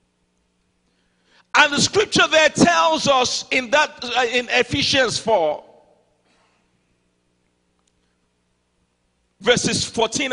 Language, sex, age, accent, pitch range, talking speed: English, male, 50-69, Nigerian, 200-305 Hz, 75 wpm